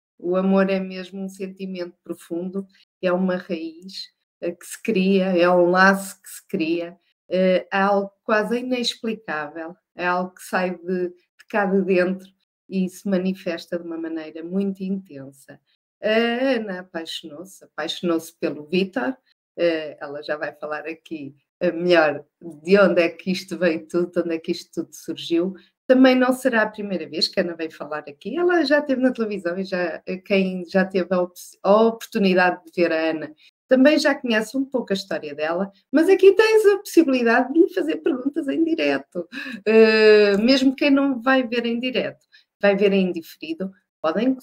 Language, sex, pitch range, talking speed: Portuguese, female, 175-255 Hz, 170 wpm